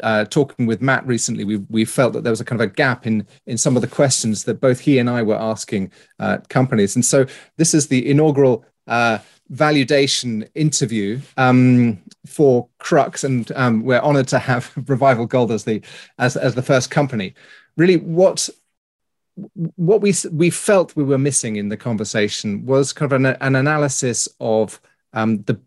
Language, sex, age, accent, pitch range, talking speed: English, male, 30-49, British, 110-140 Hz, 185 wpm